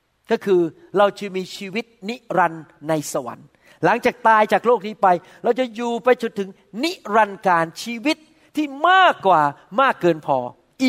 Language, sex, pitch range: Thai, male, 195-255 Hz